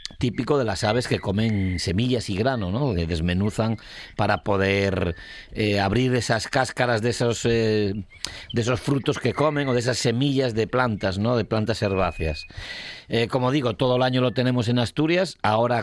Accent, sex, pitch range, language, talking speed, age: Spanish, male, 100-125 Hz, Spanish, 180 wpm, 40-59